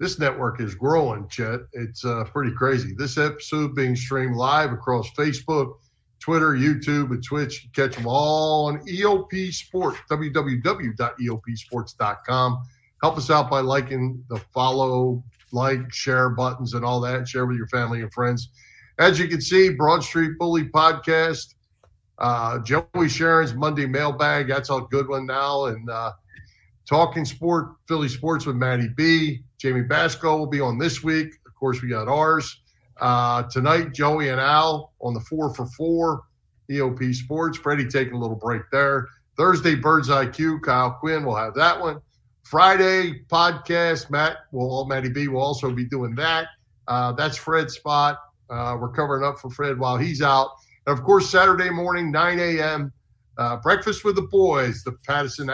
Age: 50-69